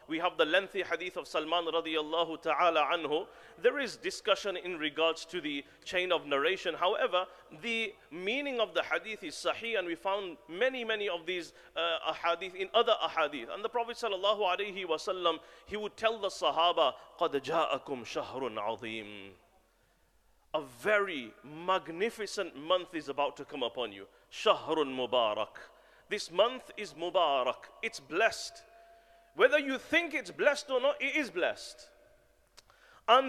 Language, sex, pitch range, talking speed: English, male, 175-290 Hz, 135 wpm